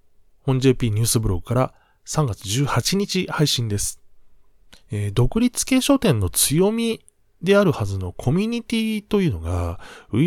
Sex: male